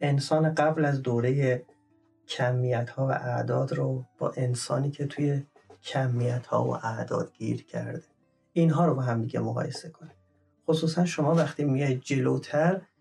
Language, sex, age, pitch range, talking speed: Persian, male, 30-49, 125-155 Hz, 145 wpm